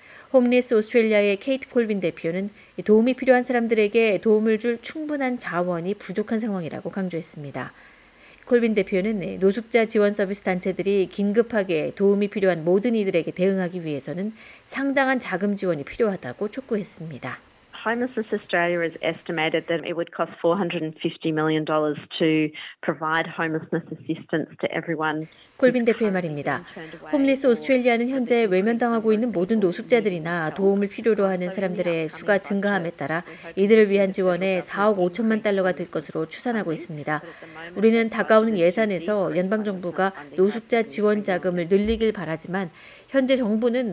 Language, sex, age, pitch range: Korean, female, 30-49, 175-230 Hz